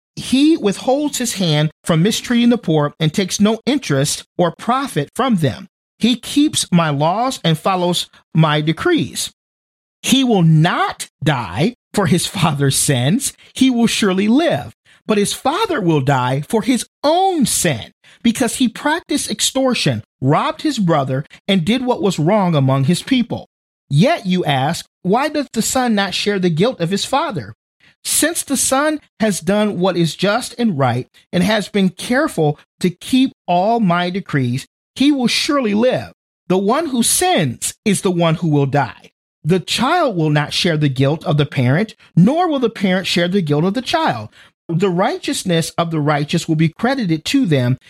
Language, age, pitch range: English, 40-59, 160-240 Hz